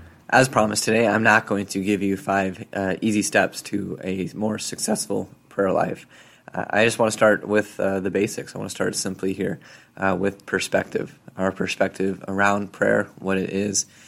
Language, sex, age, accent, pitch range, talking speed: English, male, 20-39, American, 95-105 Hz, 190 wpm